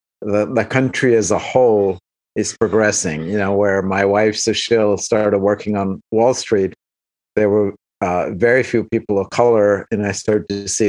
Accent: American